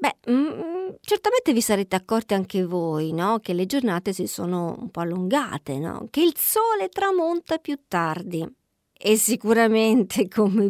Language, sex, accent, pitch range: Italian, female, native, 175-245 Hz